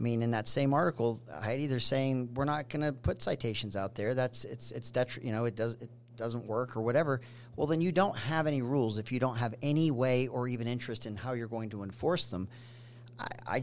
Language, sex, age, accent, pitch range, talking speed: English, male, 40-59, American, 110-125 Hz, 240 wpm